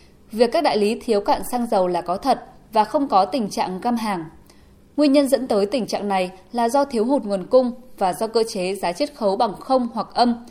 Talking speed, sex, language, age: 240 wpm, female, Vietnamese, 10-29